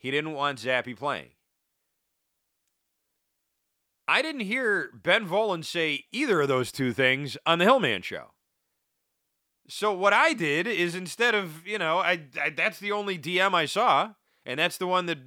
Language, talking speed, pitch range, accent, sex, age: English, 165 wpm, 130-180 Hz, American, male, 30-49